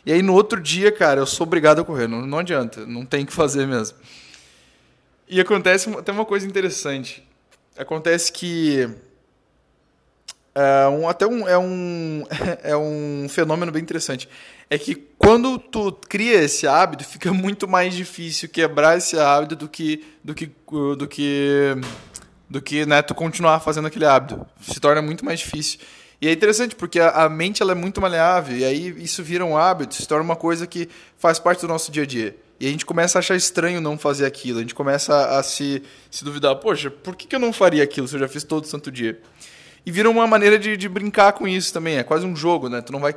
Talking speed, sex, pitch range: 200 wpm, male, 140-175 Hz